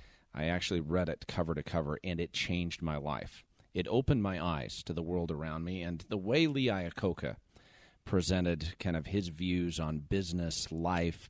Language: English